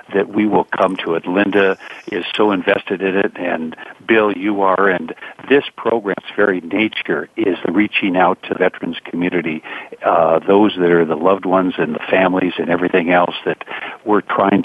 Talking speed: 185 wpm